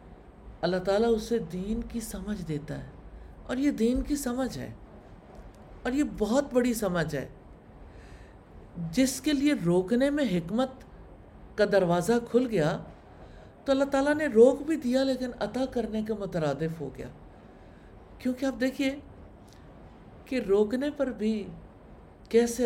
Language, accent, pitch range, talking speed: English, Indian, 160-230 Hz, 130 wpm